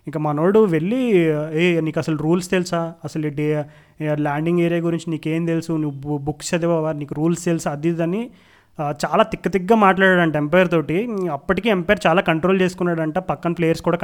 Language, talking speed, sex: Telugu, 160 wpm, male